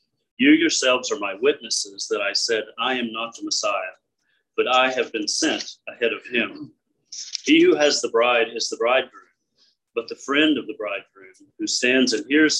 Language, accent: English, American